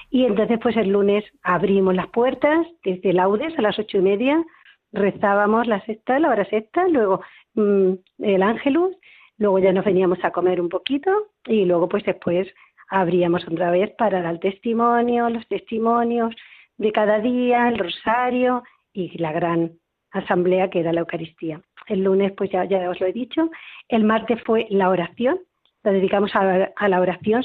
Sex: female